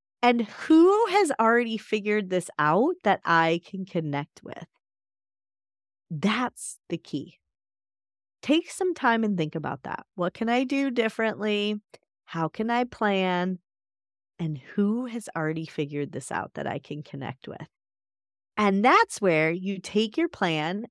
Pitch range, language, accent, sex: 160-230 Hz, English, American, female